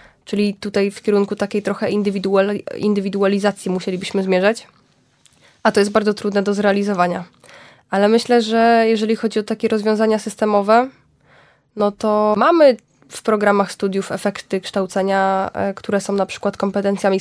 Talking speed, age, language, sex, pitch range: 135 wpm, 10-29, Polish, female, 195-220 Hz